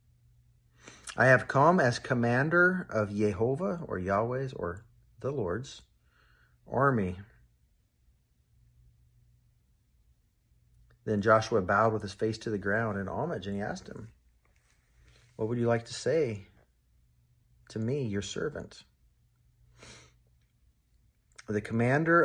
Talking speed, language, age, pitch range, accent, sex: 110 wpm, English, 40-59, 95-115 Hz, American, male